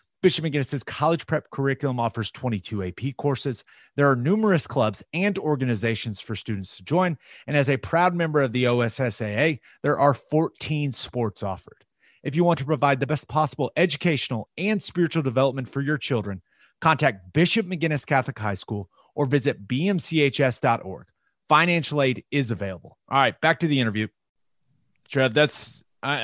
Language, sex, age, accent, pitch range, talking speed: English, male, 30-49, American, 115-145 Hz, 160 wpm